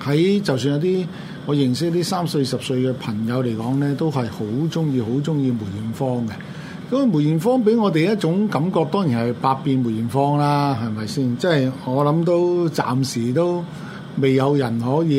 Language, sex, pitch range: Chinese, male, 130-175 Hz